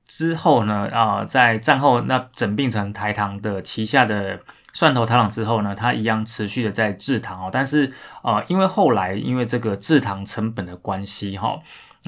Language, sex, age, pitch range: Chinese, male, 20-39, 105-125 Hz